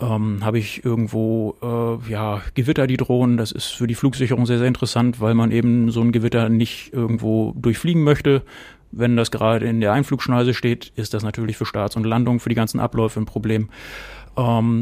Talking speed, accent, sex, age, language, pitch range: 195 wpm, German, male, 30-49, German, 110-125 Hz